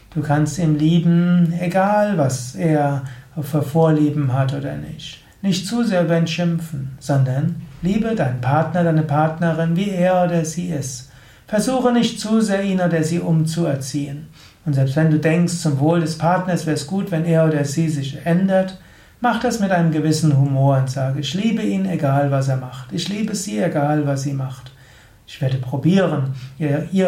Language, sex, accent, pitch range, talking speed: German, male, German, 140-175 Hz, 175 wpm